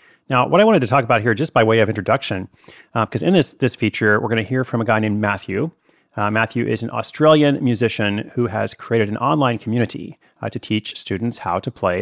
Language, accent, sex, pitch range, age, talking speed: English, American, male, 100-120 Hz, 30-49, 235 wpm